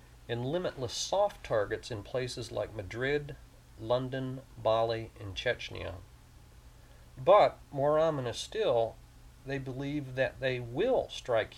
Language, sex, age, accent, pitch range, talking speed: English, male, 40-59, American, 100-130 Hz, 115 wpm